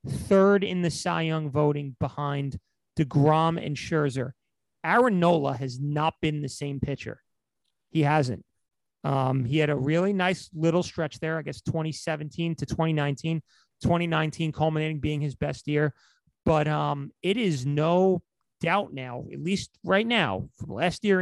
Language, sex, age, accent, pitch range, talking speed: English, male, 30-49, American, 140-165 Hz, 155 wpm